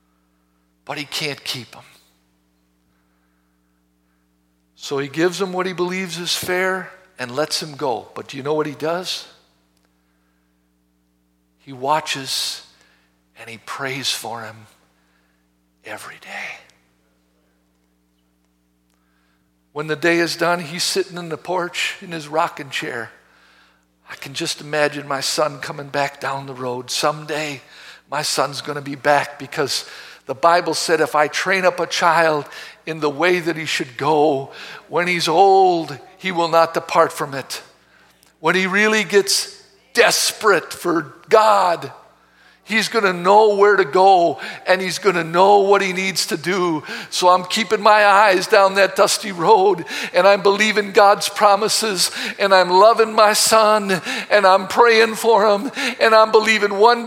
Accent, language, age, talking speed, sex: American, English, 60-79, 150 wpm, male